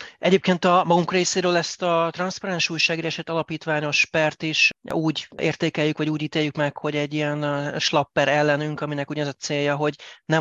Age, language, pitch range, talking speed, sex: 30-49, Hungarian, 145-160 Hz, 160 wpm, male